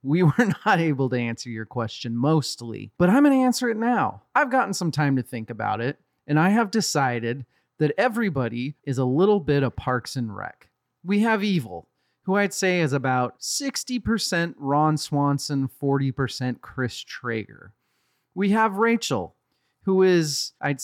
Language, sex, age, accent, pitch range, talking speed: English, male, 30-49, American, 125-180 Hz, 165 wpm